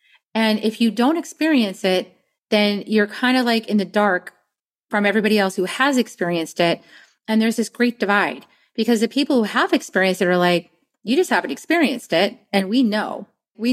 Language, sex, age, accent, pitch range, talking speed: English, female, 30-49, American, 200-255 Hz, 190 wpm